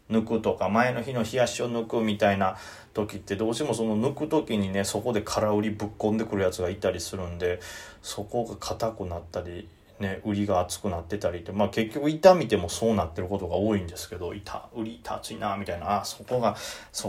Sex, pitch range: male, 95-120 Hz